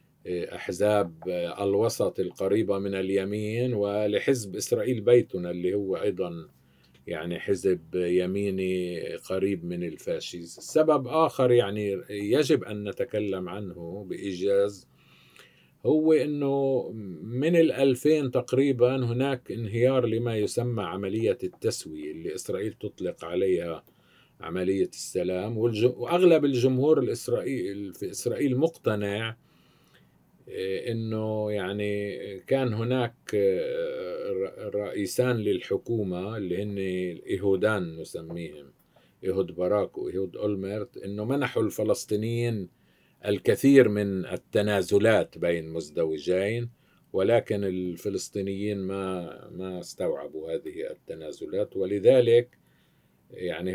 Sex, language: male, Arabic